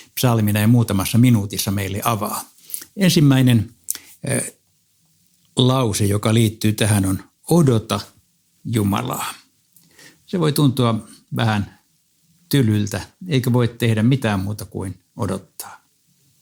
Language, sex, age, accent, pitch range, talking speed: Finnish, male, 60-79, native, 105-135 Hz, 95 wpm